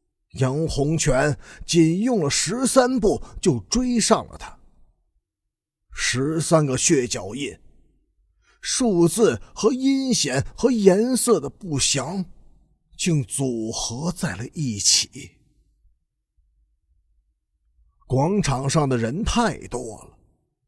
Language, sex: Chinese, male